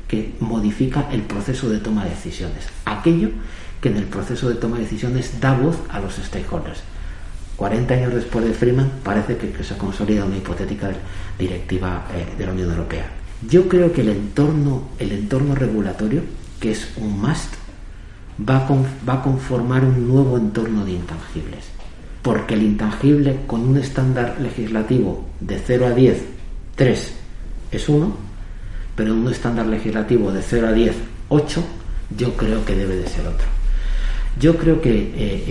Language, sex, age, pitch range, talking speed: Spanish, male, 50-69, 95-125 Hz, 165 wpm